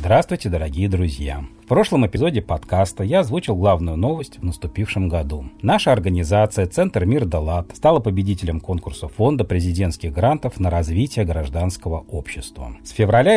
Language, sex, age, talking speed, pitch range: Russian, male, 40-59, 140 wpm, 85-110 Hz